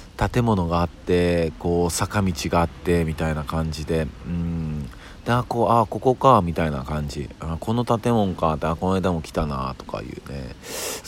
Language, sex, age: Japanese, male, 40-59